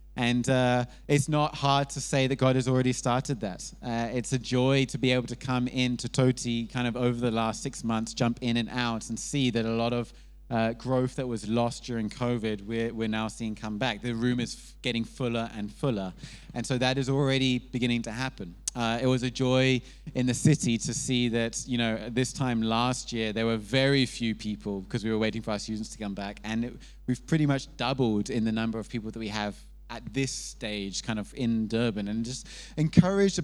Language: English